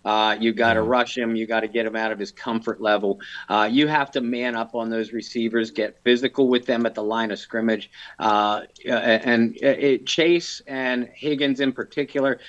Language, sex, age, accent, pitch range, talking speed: English, male, 50-69, American, 115-135 Hz, 200 wpm